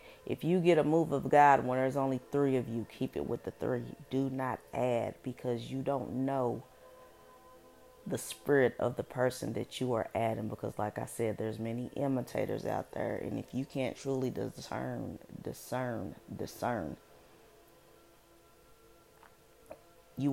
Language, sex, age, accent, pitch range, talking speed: English, female, 30-49, American, 115-140 Hz, 155 wpm